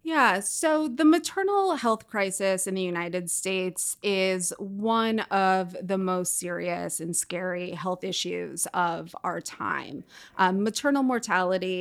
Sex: female